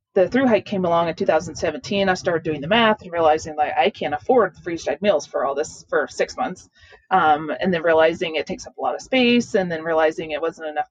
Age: 30-49